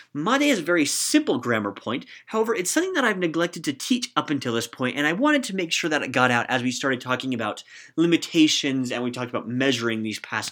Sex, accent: male, American